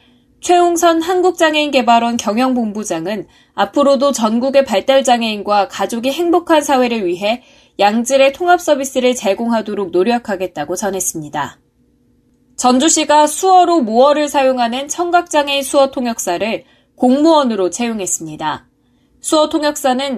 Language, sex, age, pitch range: Korean, female, 20-39, 215-295 Hz